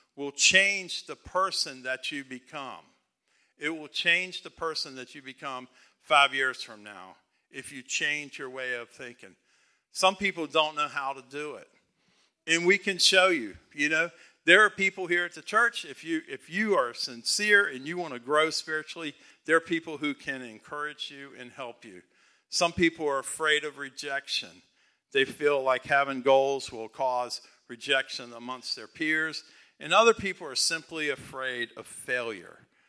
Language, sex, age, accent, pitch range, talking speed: English, male, 50-69, American, 130-165 Hz, 175 wpm